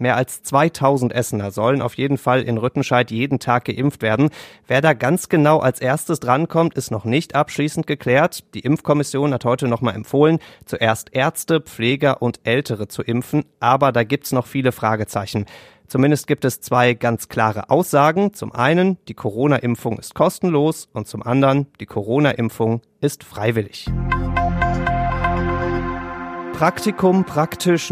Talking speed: 150 wpm